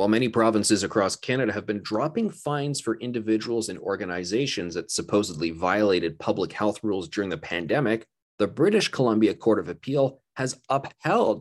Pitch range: 105-120 Hz